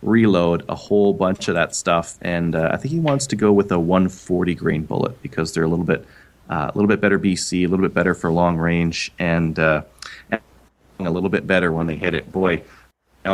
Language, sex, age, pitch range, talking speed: English, male, 30-49, 85-105 Hz, 225 wpm